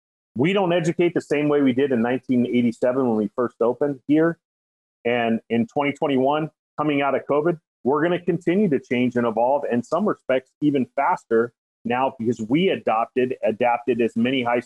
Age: 40-59